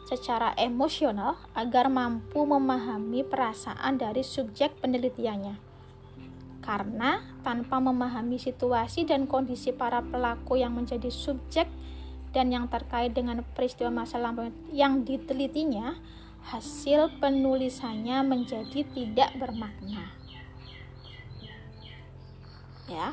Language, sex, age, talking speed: Indonesian, female, 20-39, 90 wpm